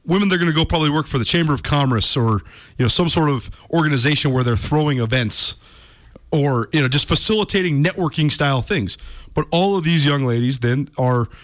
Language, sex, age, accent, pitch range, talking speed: English, male, 30-49, American, 120-160 Hz, 205 wpm